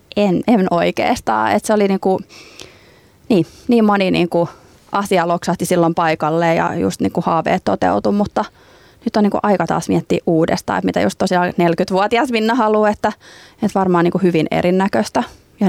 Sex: female